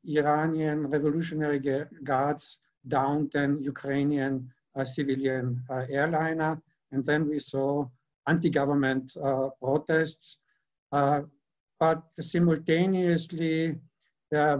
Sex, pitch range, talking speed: male, 135-155 Hz, 95 wpm